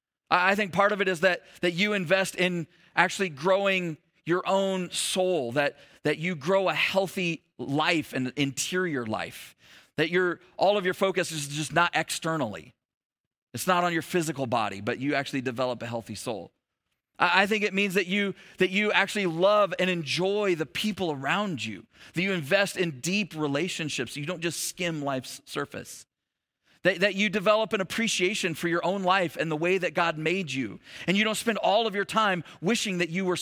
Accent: American